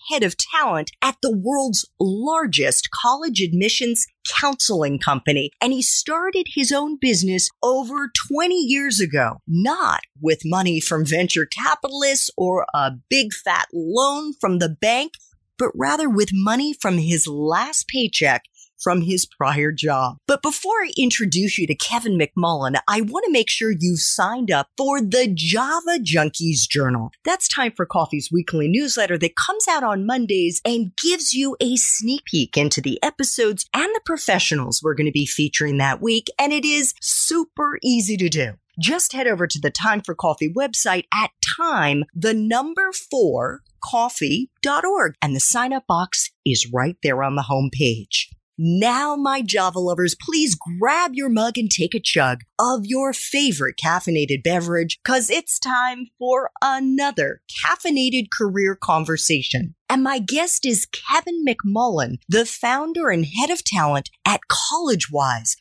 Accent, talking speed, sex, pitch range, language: American, 155 wpm, female, 160-270 Hz, English